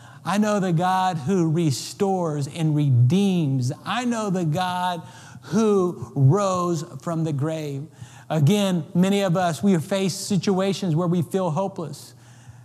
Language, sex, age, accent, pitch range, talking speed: English, male, 40-59, American, 160-205 Hz, 140 wpm